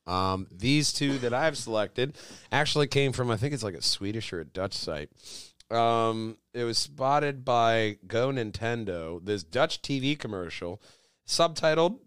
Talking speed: 160 wpm